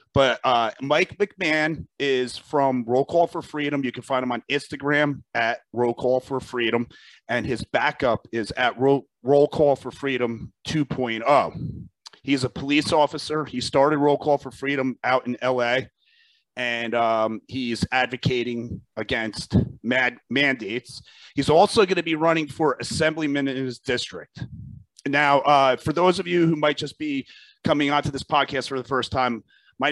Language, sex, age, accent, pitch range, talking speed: English, male, 30-49, American, 120-150 Hz, 165 wpm